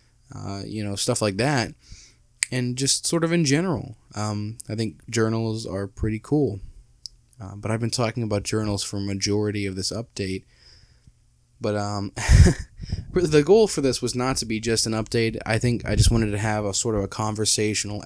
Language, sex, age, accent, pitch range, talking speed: English, male, 20-39, American, 105-125 Hz, 185 wpm